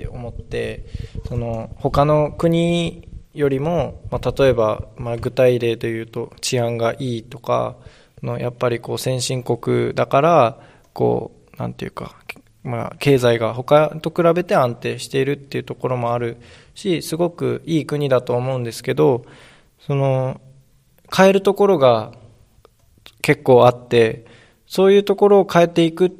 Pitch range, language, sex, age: 125-175 Hz, Japanese, male, 20-39